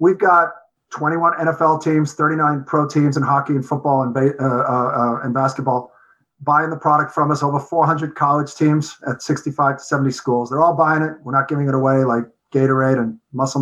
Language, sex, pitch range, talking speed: English, male, 135-165 Hz, 205 wpm